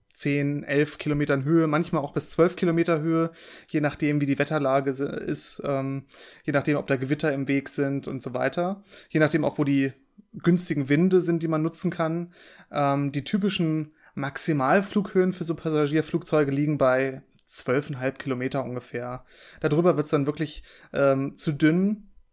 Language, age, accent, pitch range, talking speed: German, 20-39, German, 140-165 Hz, 160 wpm